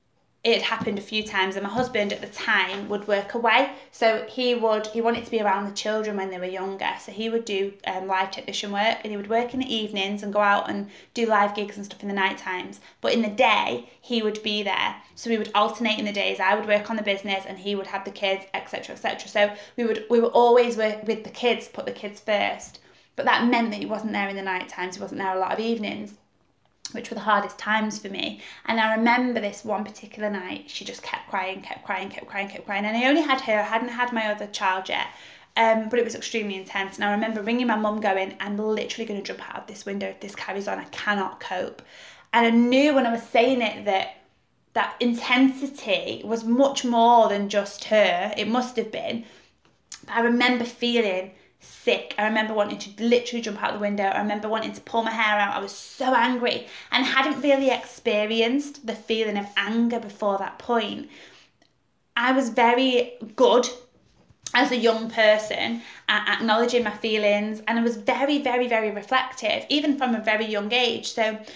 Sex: female